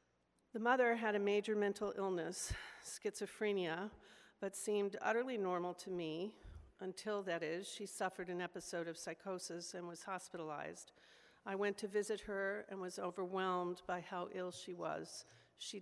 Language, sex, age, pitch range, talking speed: English, female, 50-69, 180-205 Hz, 150 wpm